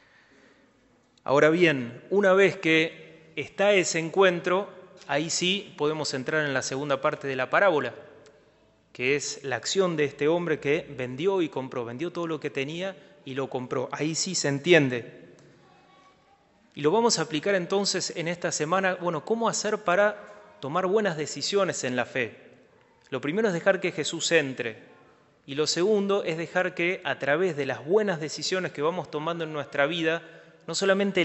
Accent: Argentinian